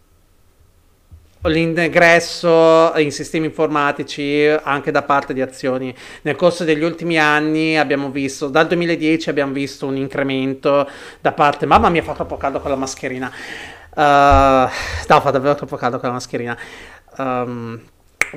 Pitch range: 130-160 Hz